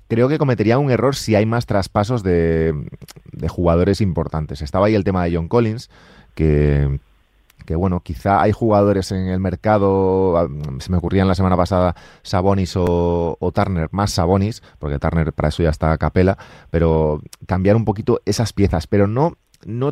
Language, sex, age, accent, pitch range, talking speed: Spanish, male, 30-49, Spanish, 80-100 Hz, 180 wpm